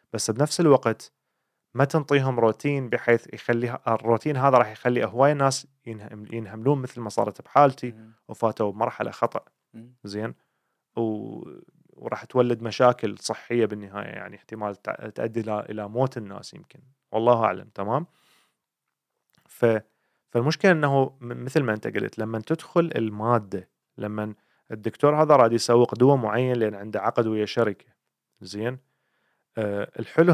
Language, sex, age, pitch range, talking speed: Arabic, male, 30-49, 110-135 Hz, 125 wpm